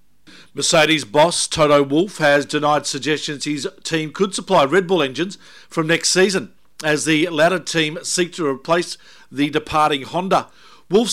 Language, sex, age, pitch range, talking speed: English, male, 50-69, 135-170 Hz, 150 wpm